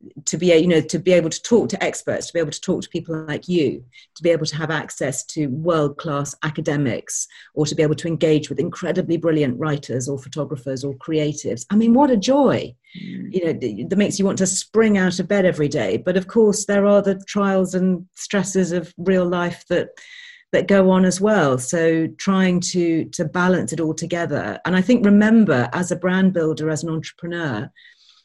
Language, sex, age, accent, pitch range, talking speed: English, female, 40-59, British, 155-190 Hz, 210 wpm